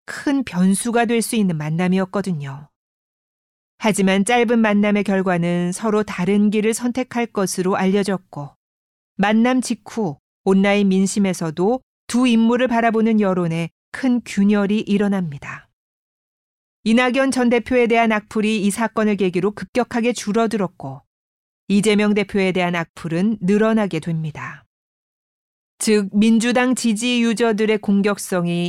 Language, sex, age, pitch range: Korean, female, 40-59, 190-230 Hz